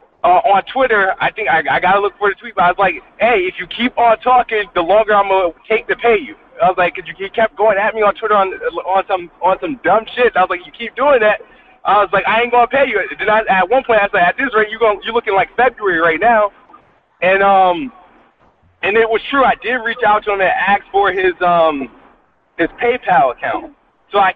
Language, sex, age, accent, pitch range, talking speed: English, male, 20-39, American, 185-250 Hz, 260 wpm